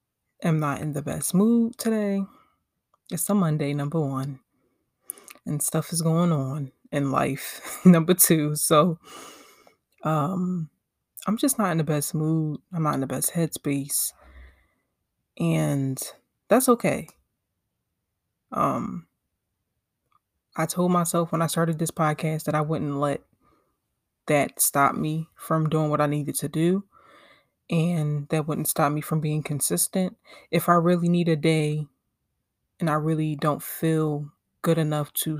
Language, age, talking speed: English, 20-39, 140 wpm